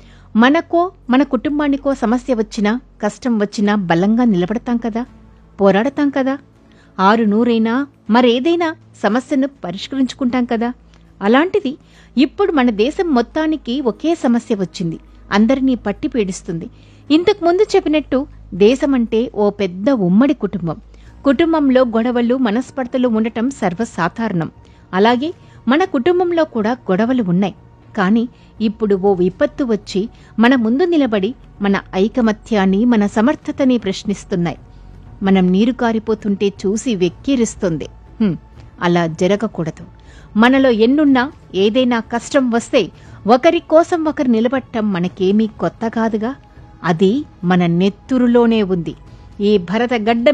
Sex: female